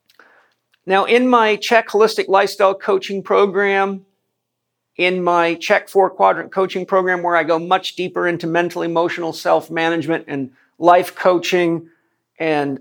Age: 50-69